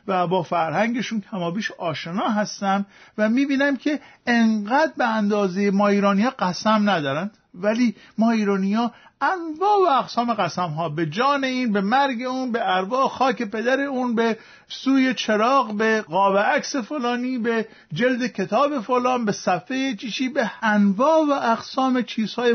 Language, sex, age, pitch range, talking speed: Persian, male, 50-69, 165-235 Hz, 150 wpm